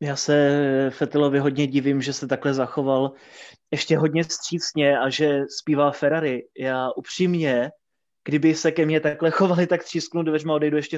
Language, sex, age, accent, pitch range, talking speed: Czech, male, 20-39, native, 145-165 Hz, 160 wpm